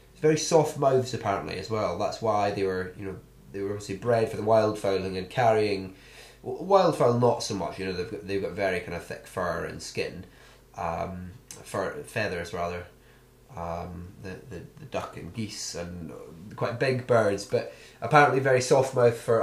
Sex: male